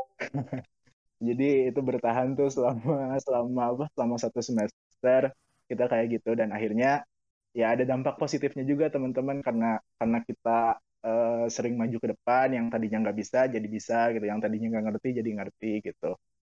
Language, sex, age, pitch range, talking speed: Indonesian, male, 20-39, 110-130 Hz, 160 wpm